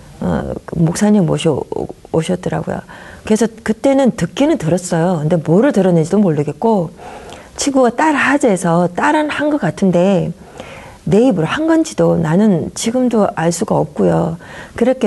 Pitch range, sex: 170-230 Hz, female